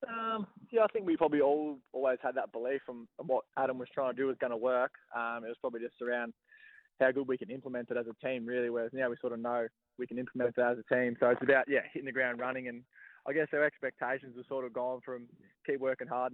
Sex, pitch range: male, 115-130 Hz